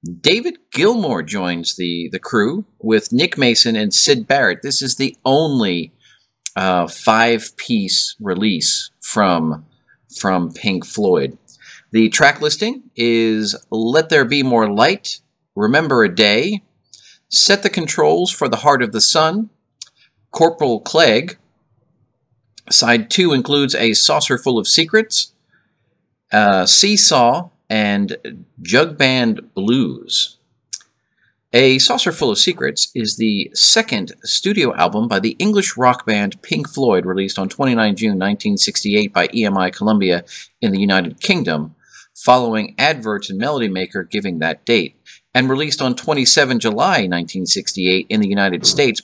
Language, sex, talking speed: English, male, 130 wpm